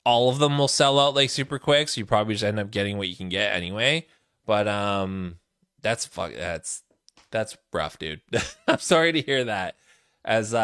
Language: English